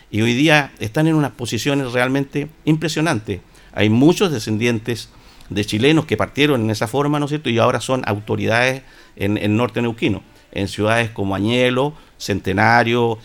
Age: 50-69